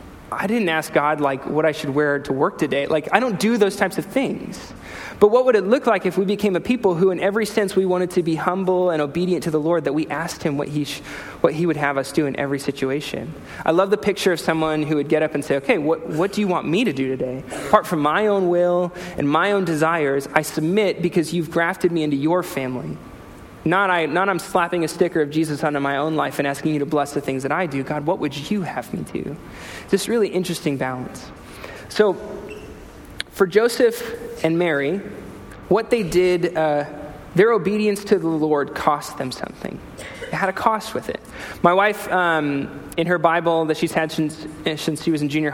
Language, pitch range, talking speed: English, 150-190 Hz, 230 wpm